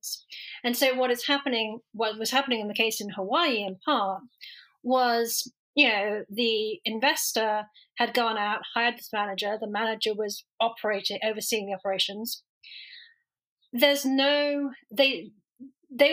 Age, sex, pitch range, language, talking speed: 40-59, female, 215-275 Hz, English, 140 wpm